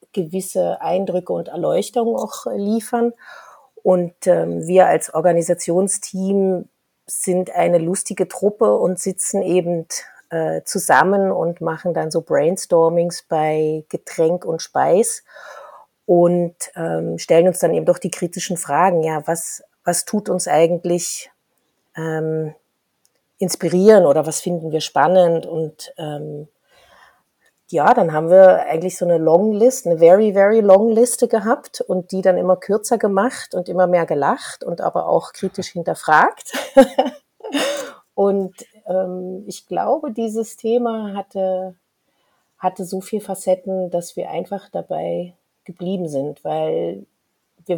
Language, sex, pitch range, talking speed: German, female, 165-200 Hz, 130 wpm